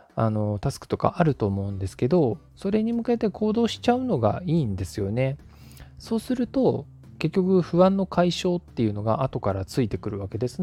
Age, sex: 20-39, male